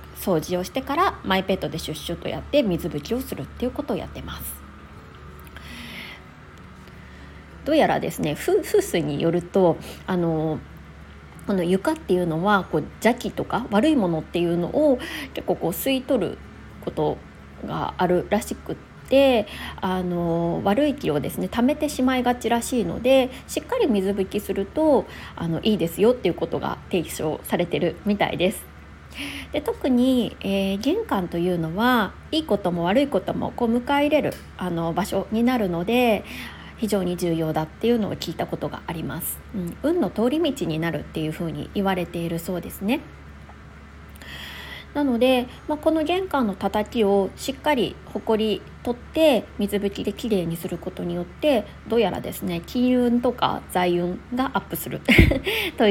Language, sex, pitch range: Japanese, female, 165-245 Hz